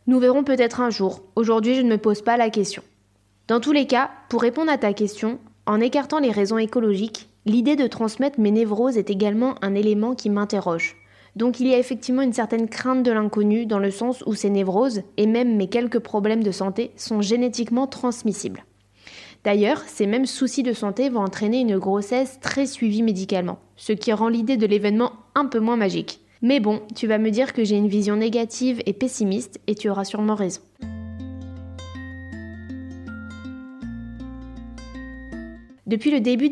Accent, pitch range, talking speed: French, 205-245 Hz, 175 wpm